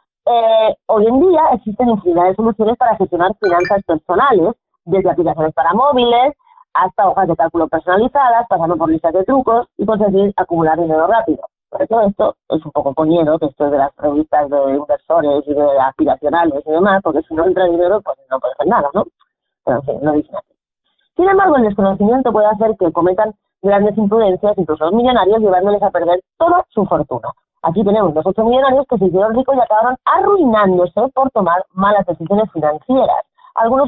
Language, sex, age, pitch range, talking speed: Spanish, female, 30-49, 180-255 Hz, 185 wpm